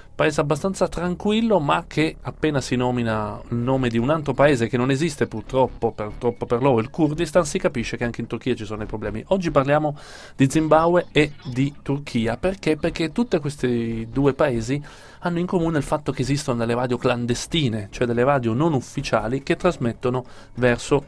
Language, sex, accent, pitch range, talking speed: Italian, male, native, 115-155 Hz, 180 wpm